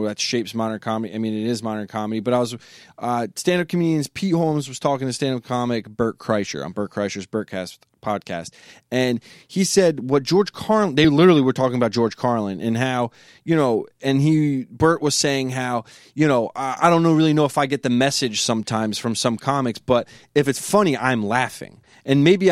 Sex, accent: male, American